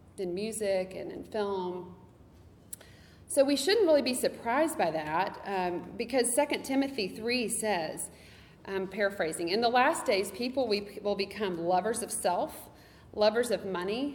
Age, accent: 40-59, American